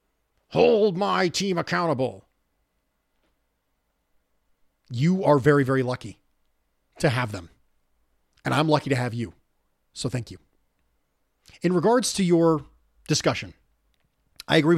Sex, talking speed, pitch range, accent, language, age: male, 115 wpm, 90-155 Hz, American, English, 40-59